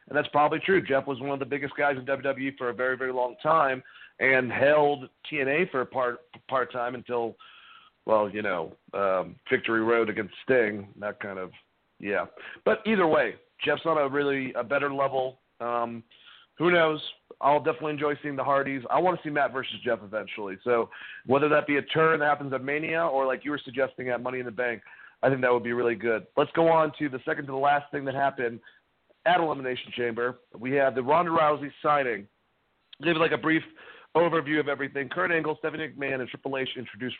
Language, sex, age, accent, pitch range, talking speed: English, male, 40-59, American, 125-150 Hz, 210 wpm